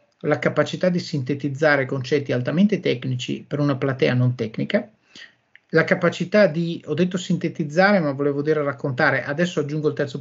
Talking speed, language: 155 wpm, Italian